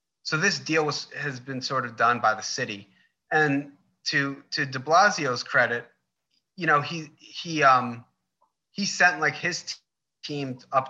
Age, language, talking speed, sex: 30-49, English, 160 wpm, male